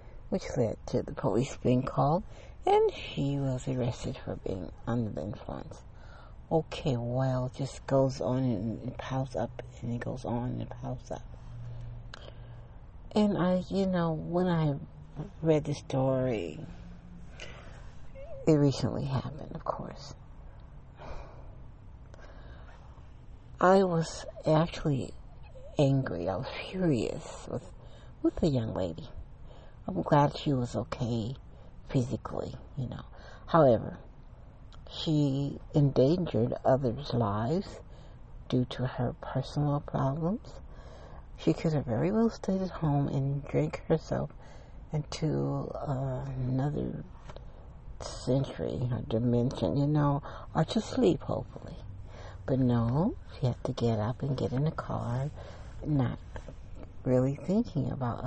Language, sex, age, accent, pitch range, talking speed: English, female, 60-79, American, 115-145 Hz, 120 wpm